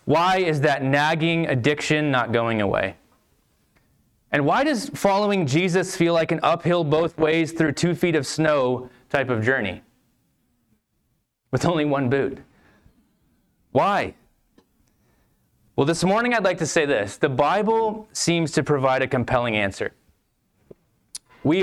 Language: English